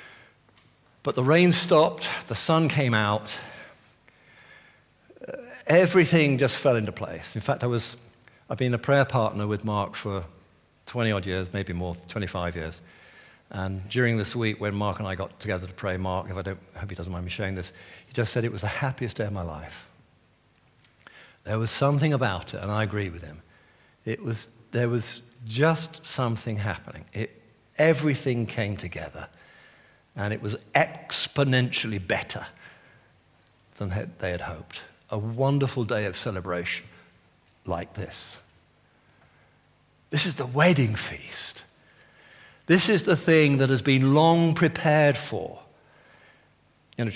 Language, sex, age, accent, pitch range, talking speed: English, male, 50-69, British, 105-135 Hz, 150 wpm